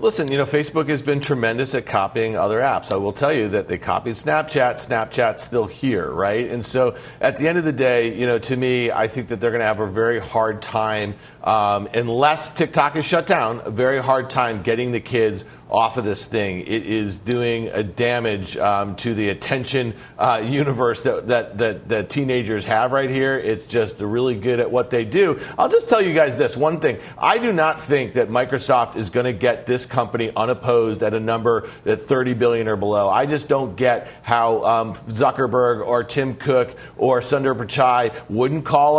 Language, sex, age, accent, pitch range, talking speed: English, male, 40-59, American, 120-145 Hz, 205 wpm